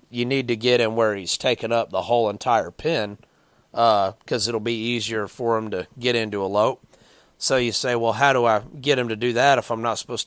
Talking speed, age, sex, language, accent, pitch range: 240 wpm, 30-49, male, English, American, 115-130 Hz